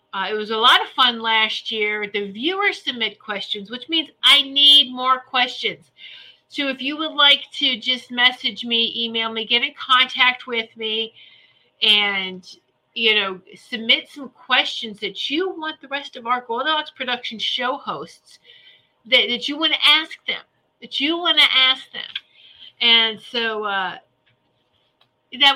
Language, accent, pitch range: English, American, 215-280 Hz